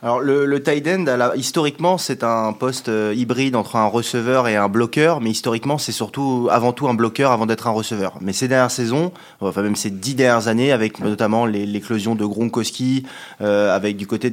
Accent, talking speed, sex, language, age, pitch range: French, 200 wpm, male, French, 20-39, 110-130 Hz